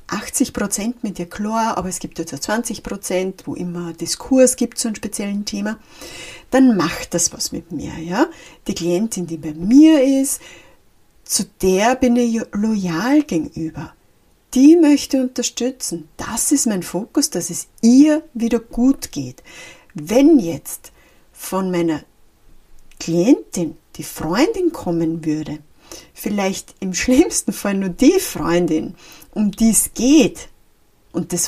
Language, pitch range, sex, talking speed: German, 170-250 Hz, female, 135 wpm